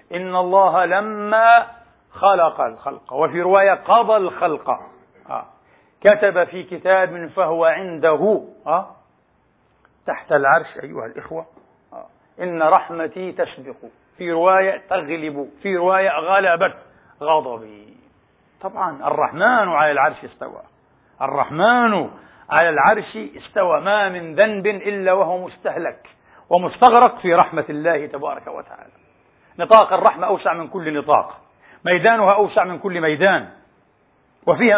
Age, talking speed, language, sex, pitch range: 60-79, 105 wpm, Arabic, male, 175-210 Hz